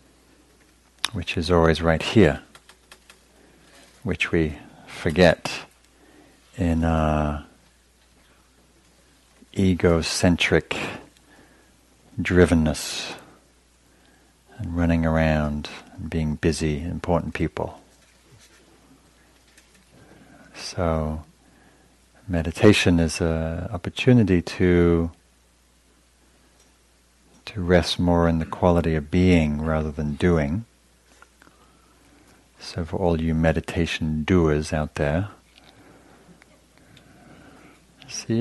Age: 50-69